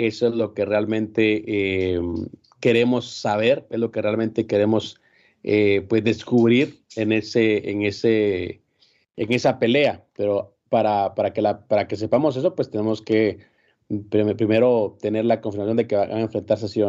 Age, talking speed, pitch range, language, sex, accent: 40-59, 160 wpm, 105-120 Hz, Spanish, male, Mexican